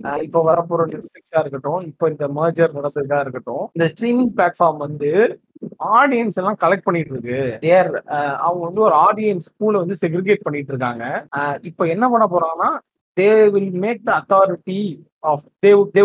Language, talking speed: Tamil, 50 wpm